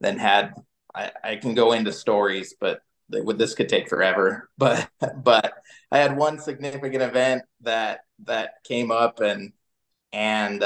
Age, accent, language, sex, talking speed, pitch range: 20-39, American, English, male, 145 wpm, 110-140 Hz